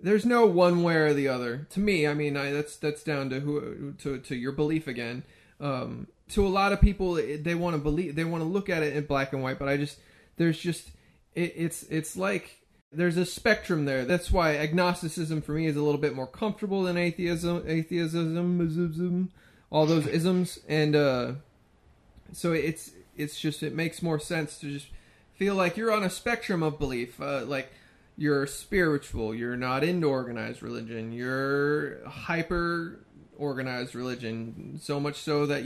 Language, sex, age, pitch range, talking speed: English, male, 20-39, 140-170 Hz, 185 wpm